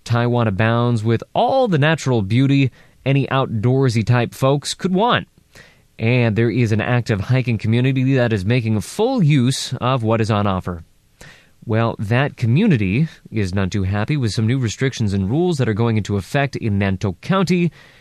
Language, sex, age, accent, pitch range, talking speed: English, male, 20-39, American, 105-140 Hz, 165 wpm